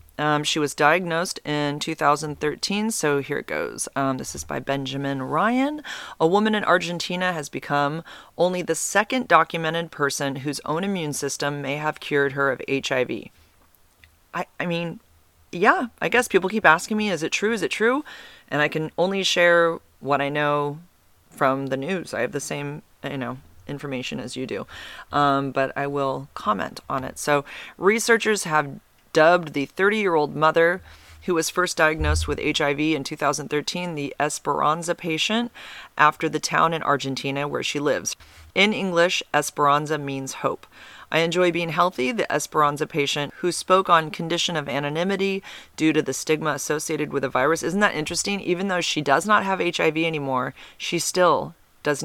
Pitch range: 140-170 Hz